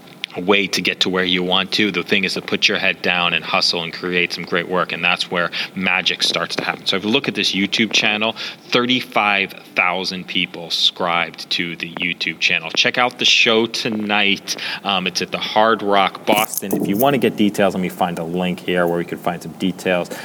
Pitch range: 90-105 Hz